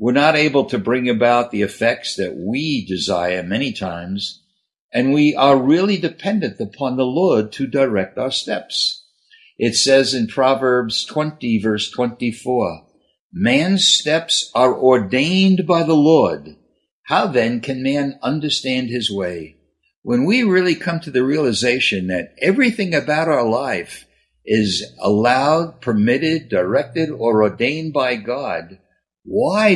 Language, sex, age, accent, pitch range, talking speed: English, male, 60-79, American, 105-155 Hz, 135 wpm